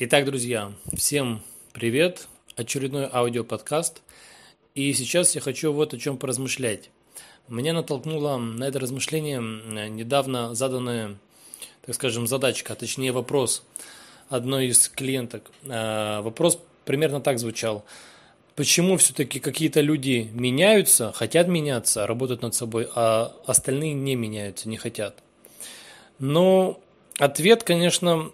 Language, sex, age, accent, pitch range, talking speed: Russian, male, 20-39, native, 120-150 Hz, 110 wpm